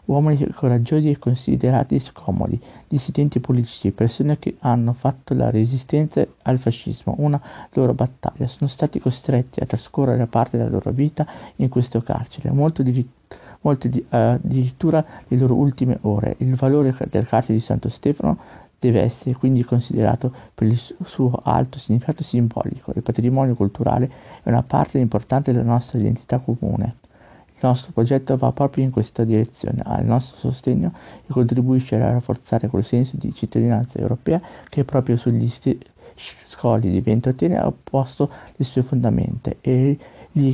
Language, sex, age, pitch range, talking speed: Italian, male, 50-69, 120-135 Hz, 150 wpm